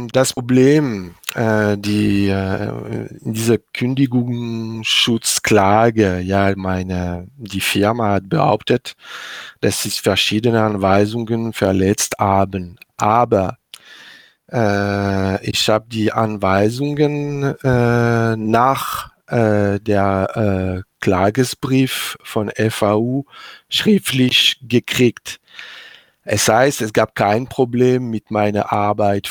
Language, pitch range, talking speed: German, 95-115 Hz, 90 wpm